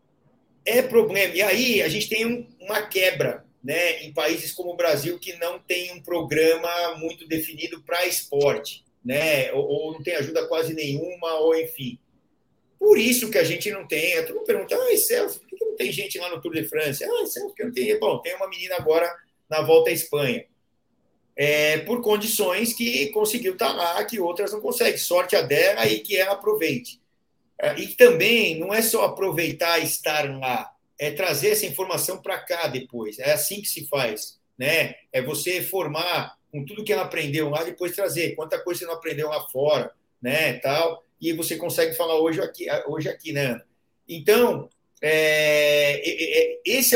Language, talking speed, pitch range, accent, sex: Portuguese, 190 wpm, 155-225 Hz, Brazilian, male